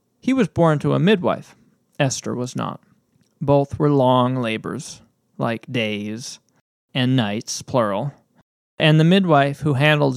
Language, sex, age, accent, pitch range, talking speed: English, male, 20-39, American, 130-165 Hz, 135 wpm